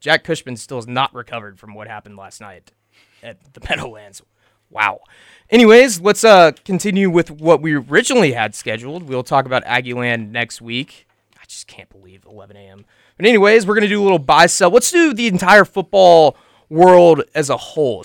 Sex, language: male, English